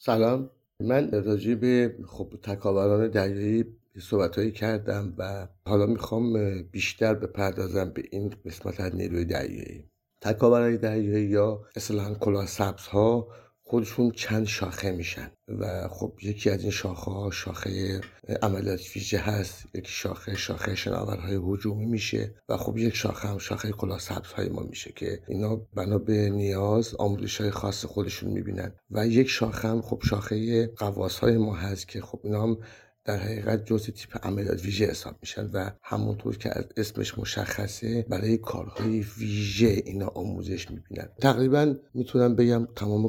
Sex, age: male, 50-69